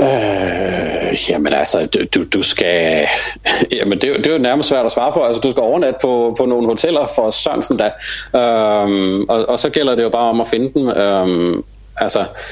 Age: 40-59